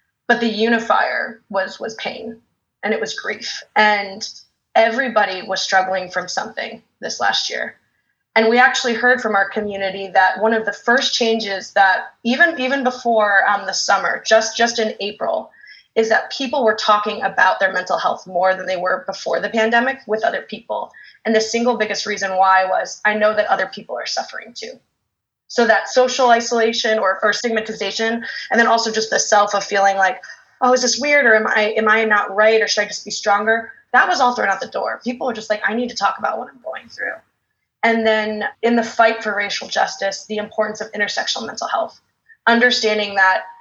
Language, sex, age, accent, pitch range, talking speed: English, female, 20-39, American, 195-230 Hz, 200 wpm